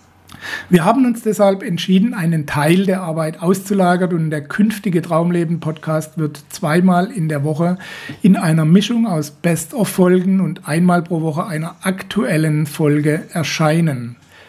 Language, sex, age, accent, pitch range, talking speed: German, male, 60-79, German, 155-195 Hz, 135 wpm